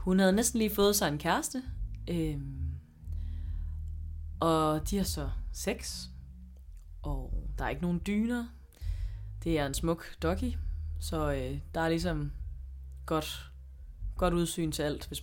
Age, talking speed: 20-39, 135 wpm